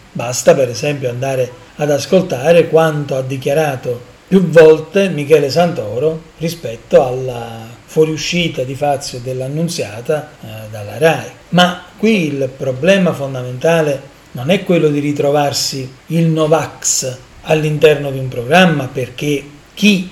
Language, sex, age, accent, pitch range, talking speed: Italian, male, 40-59, native, 135-170 Hz, 115 wpm